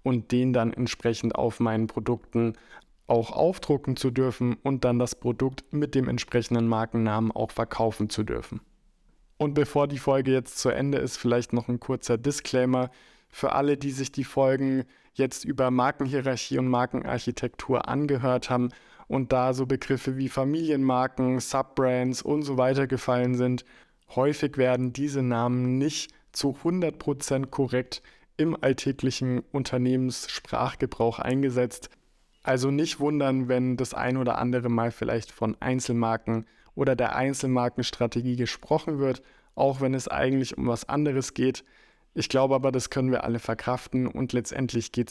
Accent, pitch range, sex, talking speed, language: German, 120-135 Hz, male, 145 wpm, German